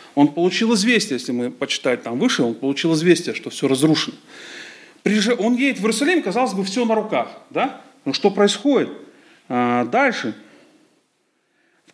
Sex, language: male, Russian